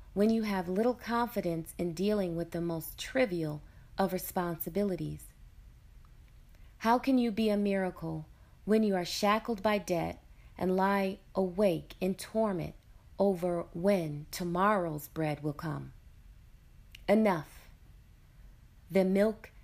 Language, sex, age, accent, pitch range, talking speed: English, female, 30-49, American, 170-215 Hz, 120 wpm